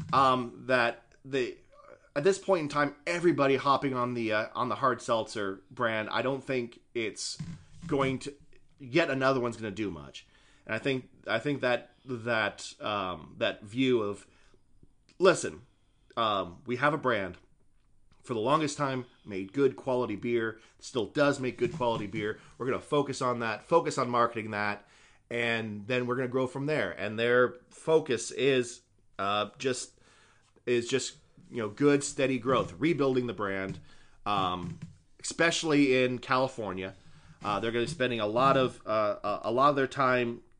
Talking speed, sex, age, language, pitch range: 170 wpm, male, 30-49, English, 115-140 Hz